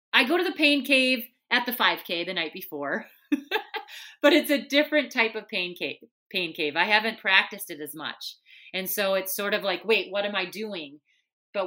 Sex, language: female, English